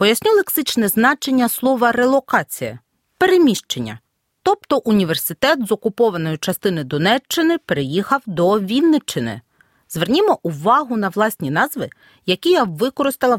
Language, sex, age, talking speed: Ukrainian, female, 40-59, 110 wpm